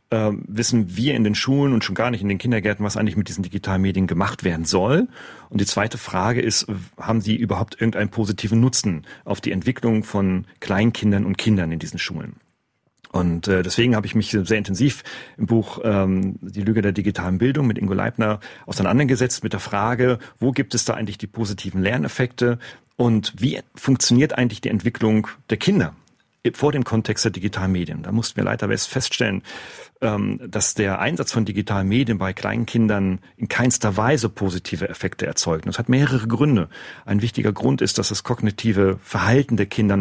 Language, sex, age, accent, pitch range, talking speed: German, male, 40-59, German, 100-120 Hz, 180 wpm